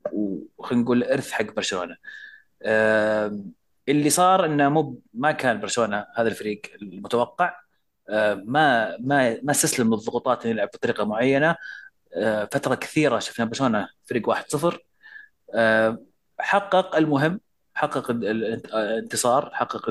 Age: 30-49